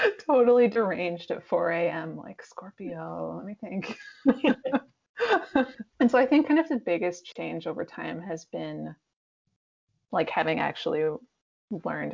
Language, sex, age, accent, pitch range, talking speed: English, female, 20-39, American, 165-245 Hz, 135 wpm